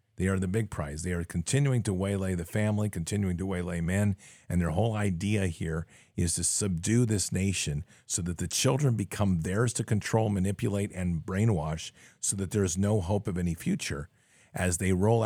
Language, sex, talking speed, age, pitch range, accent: English, male, 195 wpm, 50-69, 95-115 Hz, American